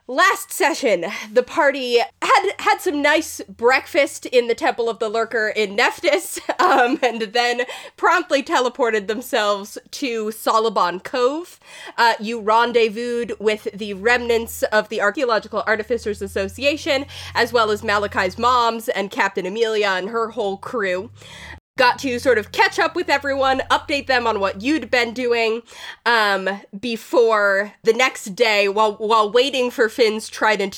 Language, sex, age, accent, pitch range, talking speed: English, female, 20-39, American, 210-265 Hz, 145 wpm